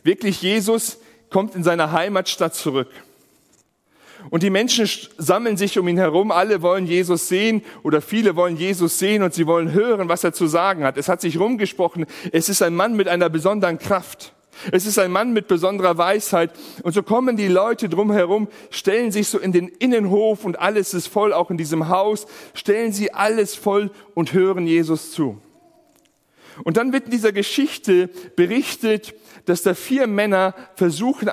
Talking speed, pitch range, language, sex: 175 wpm, 170-215 Hz, German, male